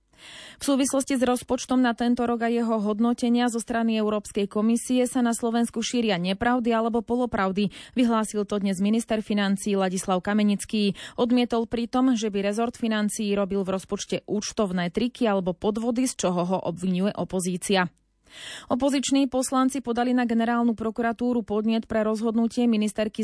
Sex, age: female, 30-49